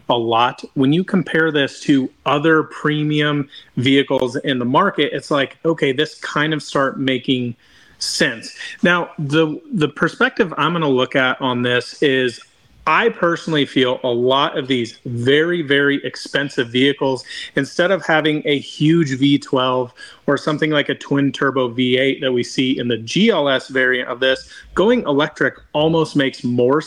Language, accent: English, American